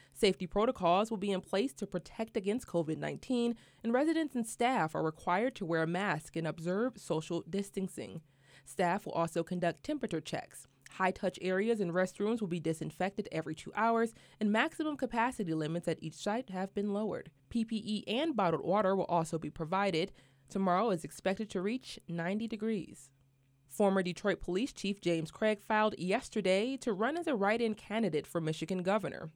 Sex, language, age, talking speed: female, English, 20-39, 170 wpm